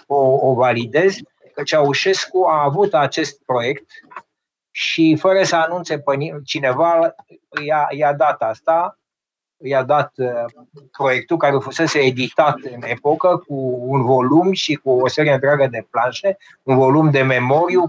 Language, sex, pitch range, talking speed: Romanian, male, 135-170 Hz, 140 wpm